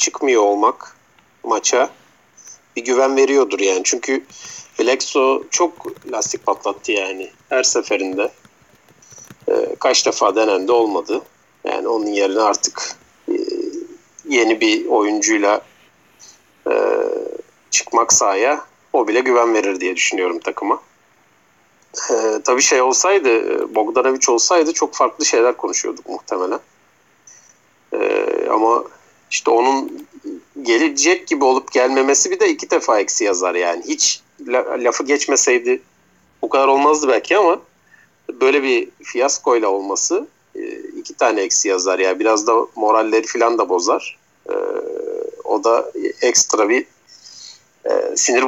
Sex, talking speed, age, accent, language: male, 110 wpm, 50-69, native, Turkish